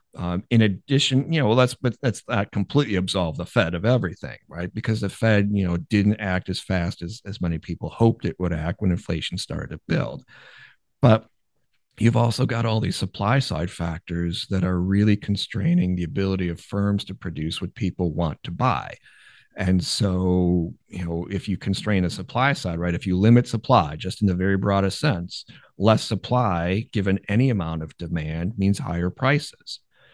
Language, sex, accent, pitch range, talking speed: English, male, American, 90-110 Hz, 185 wpm